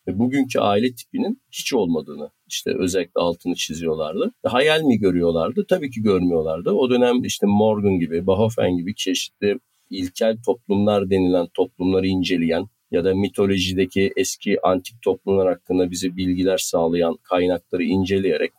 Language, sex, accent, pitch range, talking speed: Turkish, male, native, 90-120 Hz, 130 wpm